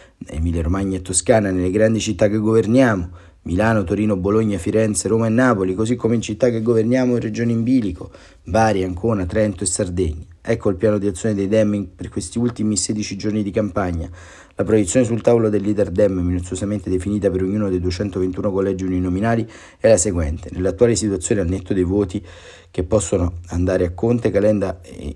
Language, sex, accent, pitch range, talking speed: Italian, male, native, 95-115 Hz, 180 wpm